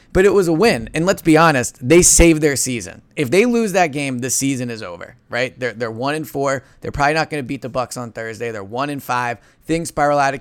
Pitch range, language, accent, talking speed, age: 125-165 Hz, English, American, 265 wpm, 30-49